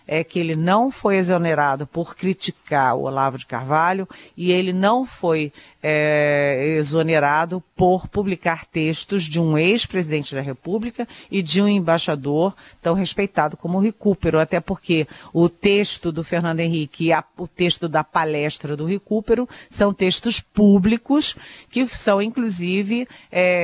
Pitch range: 155-205 Hz